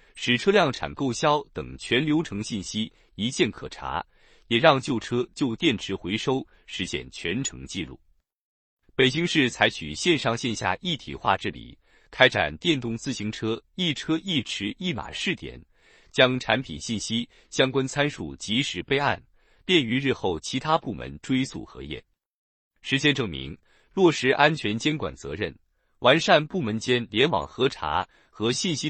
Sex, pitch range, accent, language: male, 110-150 Hz, native, Chinese